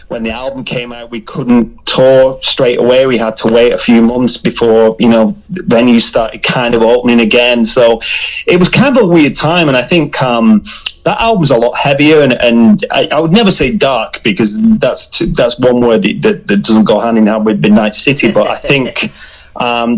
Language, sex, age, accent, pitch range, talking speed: English, male, 30-49, British, 115-140 Hz, 215 wpm